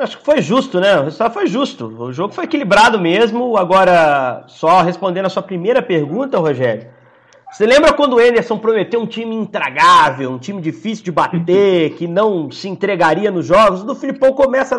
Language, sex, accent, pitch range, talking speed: Portuguese, male, Brazilian, 175-255 Hz, 185 wpm